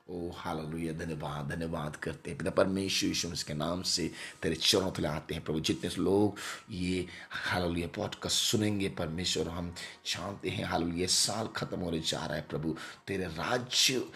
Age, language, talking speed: 30-49, Hindi, 170 wpm